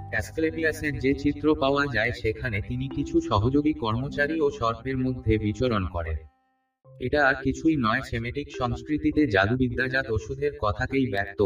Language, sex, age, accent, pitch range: Bengali, male, 30-49, native, 110-135 Hz